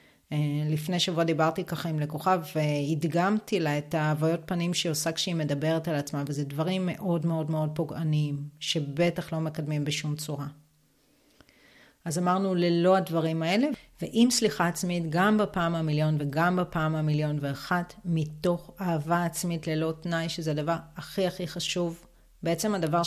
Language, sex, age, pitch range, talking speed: Hebrew, female, 30-49, 155-185 Hz, 145 wpm